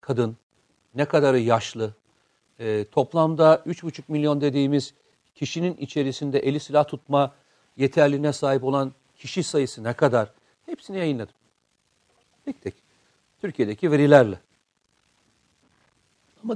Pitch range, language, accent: 130-175 Hz, Turkish, native